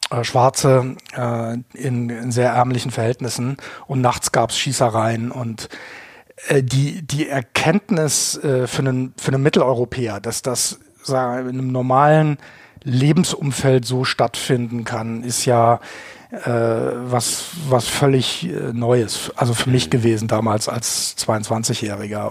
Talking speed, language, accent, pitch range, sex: 130 wpm, German, German, 120-140 Hz, male